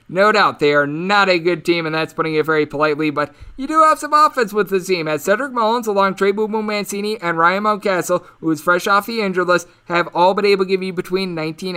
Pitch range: 155-185 Hz